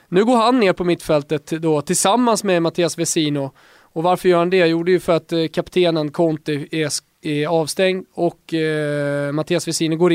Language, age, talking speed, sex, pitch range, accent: English, 20-39, 185 wpm, male, 155-185 Hz, Swedish